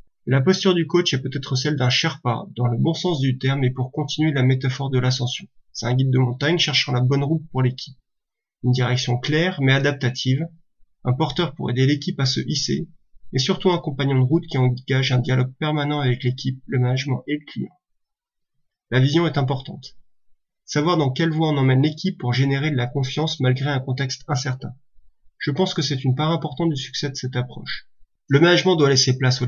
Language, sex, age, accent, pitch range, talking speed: French, male, 30-49, French, 125-150 Hz, 210 wpm